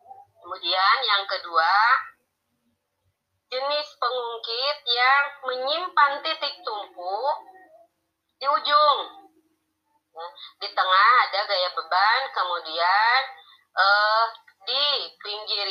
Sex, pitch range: female, 180-275 Hz